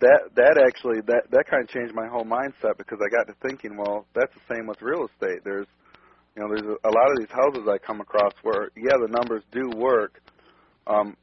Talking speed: 225 wpm